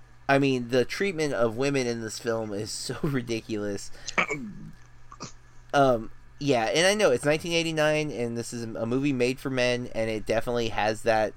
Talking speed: 170 wpm